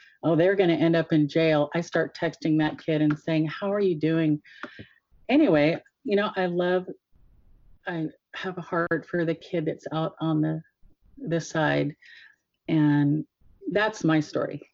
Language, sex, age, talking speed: English, female, 40-59, 165 wpm